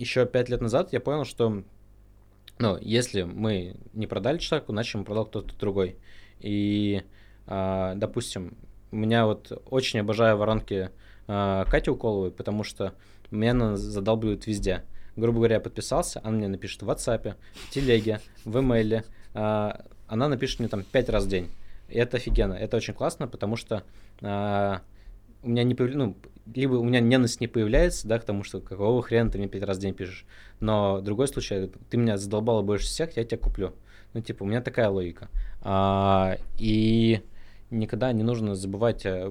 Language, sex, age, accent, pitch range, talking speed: Russian, male, 20-39, native, 100-115 Hz, 170 wpm